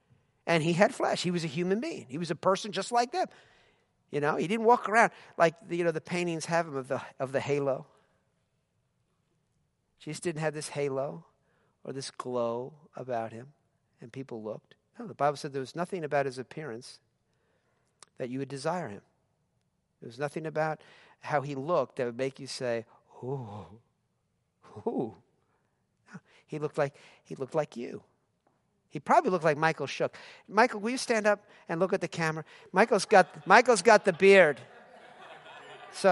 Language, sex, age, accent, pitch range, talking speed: English, male, 50-69, American, 135-205 Hz, 180 wpm